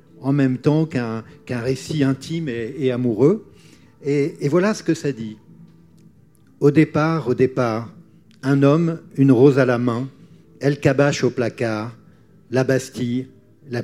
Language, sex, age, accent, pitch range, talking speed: French, male, 50-69, French, 120-145 Hz, 150 wpm